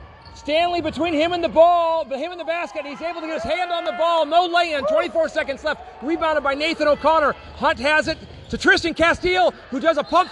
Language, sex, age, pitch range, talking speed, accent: English, male, 40-59, 205-315 Hz, 220 wpm, American